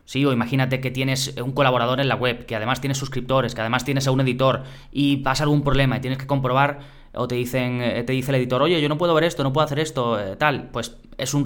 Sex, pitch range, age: male, 125-145 Hz, 20-39